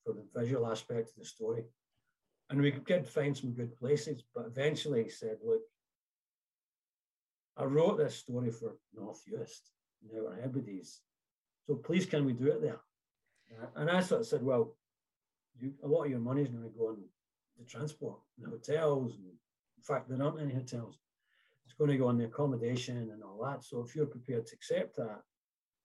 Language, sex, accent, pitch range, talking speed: English, male, British, 115-145 Hz, 185 wpm